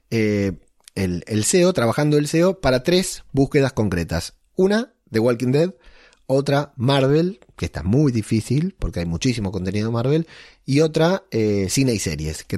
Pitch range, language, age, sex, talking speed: 100-135 Hz, Spanish, 30-49, male, 155 wpm